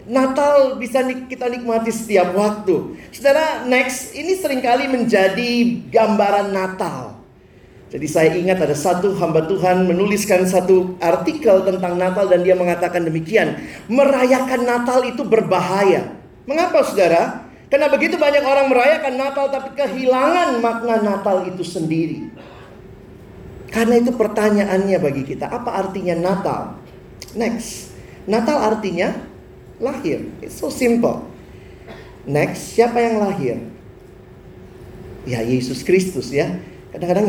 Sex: male